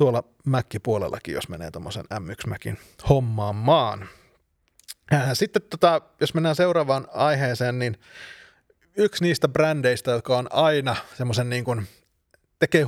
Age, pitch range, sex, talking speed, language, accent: 30-49, 110-135 Hz, male, 115 wpm, Finnish, native